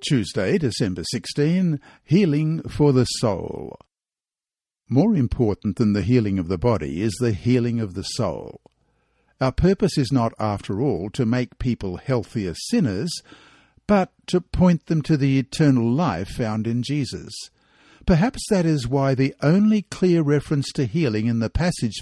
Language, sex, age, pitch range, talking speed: English, male, 60-79, 110-160 Hz, 155 wpm